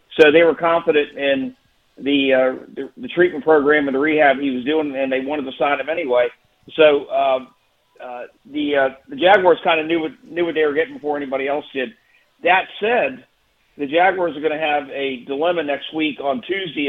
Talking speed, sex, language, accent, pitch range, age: 205 wpm, male, English, American, 140-165 Hz, 50-69